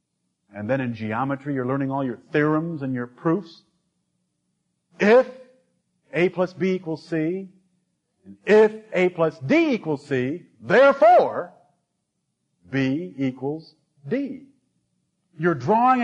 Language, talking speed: English, 110 wpm